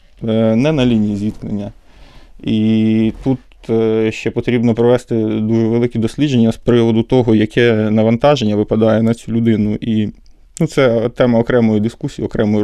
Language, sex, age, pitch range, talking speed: Ukrainian, male, 20-39, 110-125 Hz, 135 wpm